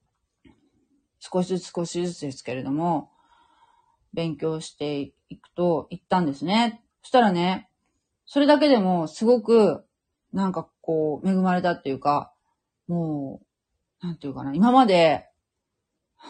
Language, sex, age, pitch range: Japanese, female, 40-59, 155-230 Hz